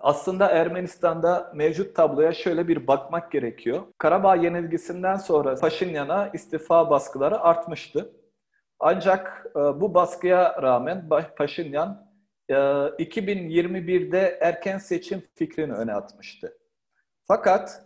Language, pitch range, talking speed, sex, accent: Turkish, 165-205 Hz, 90 wpm, male, native